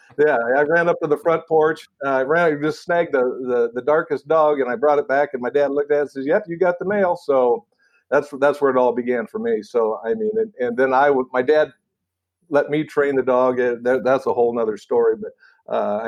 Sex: male